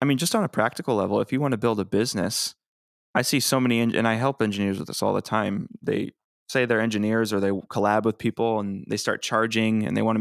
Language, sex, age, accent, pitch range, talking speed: English, male, 20-39, American, 100-120 Hz, 260 wpm